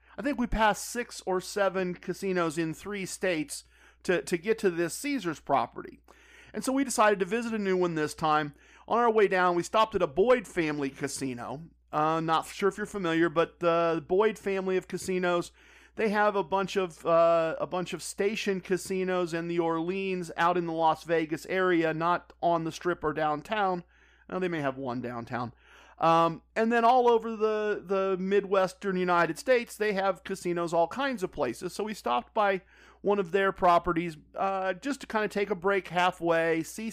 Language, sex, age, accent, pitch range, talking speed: English, male, 40-59, American, 170-205 Hz, 195 wpm